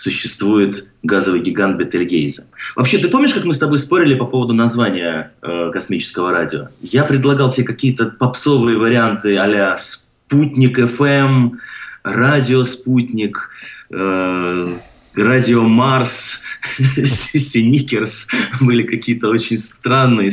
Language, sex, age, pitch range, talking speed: Russian, male, 20-39, 110-140 Hz, 100 wpm